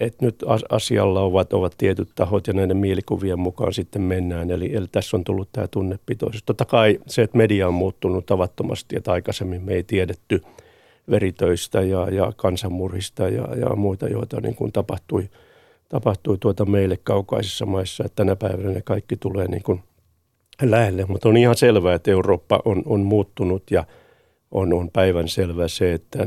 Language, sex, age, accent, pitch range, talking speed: Finnish, male, 50-69, native, 90-110 Hz, 170 wpm